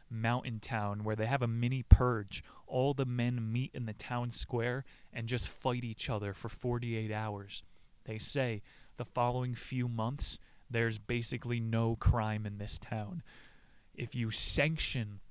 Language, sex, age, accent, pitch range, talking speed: English, male, 20-39, American, 110-130 Hz, 155 wpm